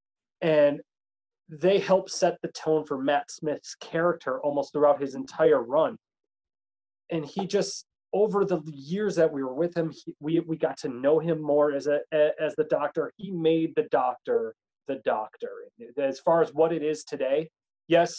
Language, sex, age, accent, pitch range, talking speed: English, male, 30-49, American, 135-180 Hz, 175 wpm